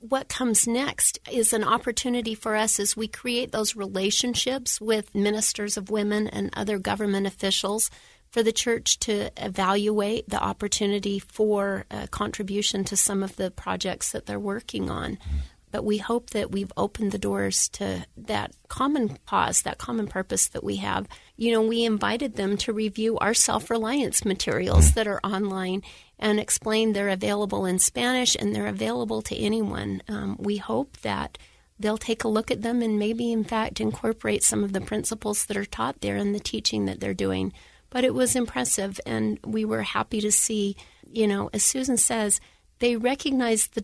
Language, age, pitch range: English, 30-49, 190-230 Hz